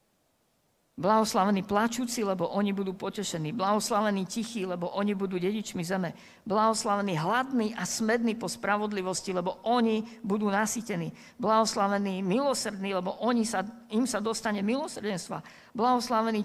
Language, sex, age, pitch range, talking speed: Slovak, female, 50-69, 195-235 Hz, 120 wpm